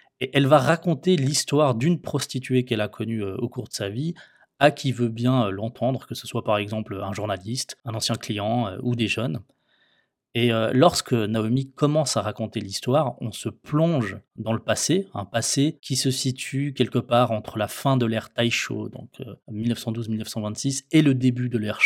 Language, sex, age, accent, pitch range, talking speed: French, male, 20-39, French, 110-135 Hz, 180 wpm